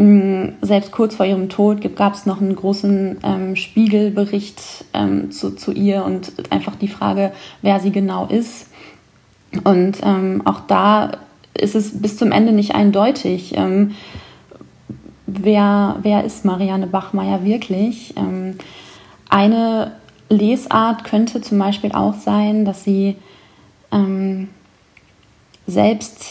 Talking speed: 125 wpm